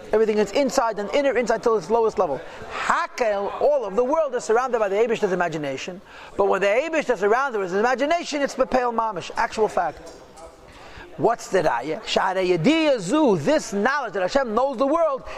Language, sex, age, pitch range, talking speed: English, male, 40-59, 215-275 Hz, 180 wpm